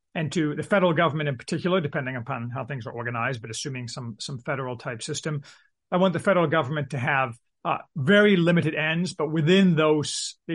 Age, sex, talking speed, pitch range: 30-49, male, 200 wpm, 145-180 Hz